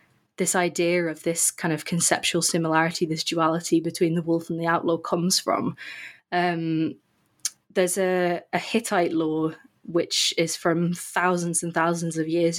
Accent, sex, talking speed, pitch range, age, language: British, female, 155 wpm, 165-185 Hz, 20-39, English